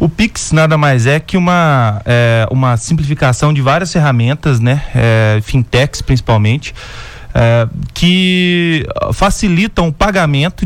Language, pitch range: Portuguese, 125-180 Hz